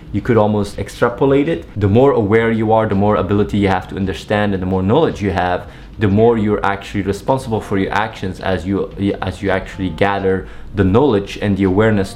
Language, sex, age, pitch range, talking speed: English, male, 20-39, 100-115 Hz, 205 wpm